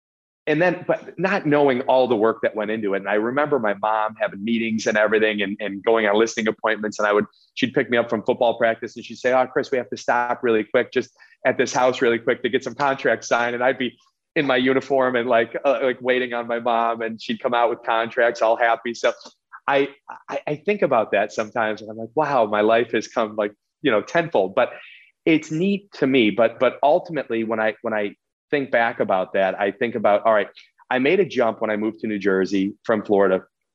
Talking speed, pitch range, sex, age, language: 240 wpm, 105-130 Hz, male, 30-49, English